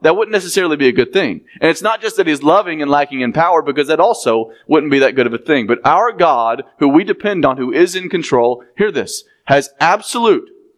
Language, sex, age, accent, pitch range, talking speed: English, male, 30-49, American, 120-175 Hz, 240 wpm